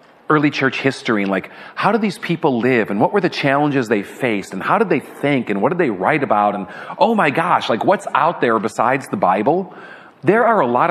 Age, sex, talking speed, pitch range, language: 40-59, male, 235 wpm, 125-150 Hz, English